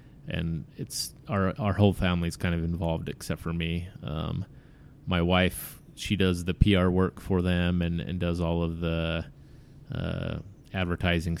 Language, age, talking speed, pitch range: English, 30-49, 160 wpm, 85-95 Hz